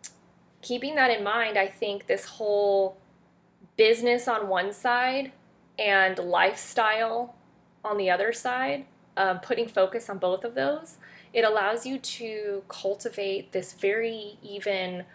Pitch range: 190-240 Hz